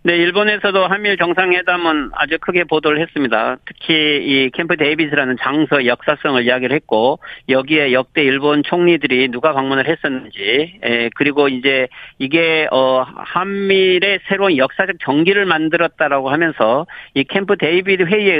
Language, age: Korean, 40-59